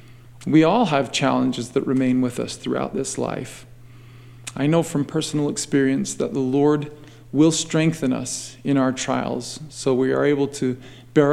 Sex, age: male, 40-59